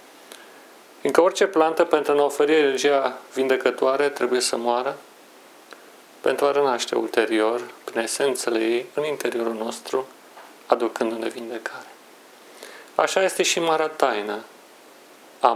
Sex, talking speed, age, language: male, 115 wpm, 40-59, Romanian